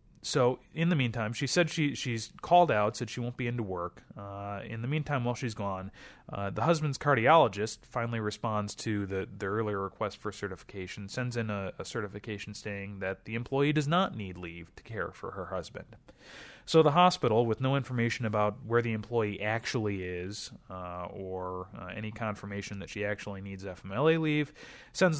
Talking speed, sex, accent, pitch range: 185 wpm, male, American, 95-120 Hz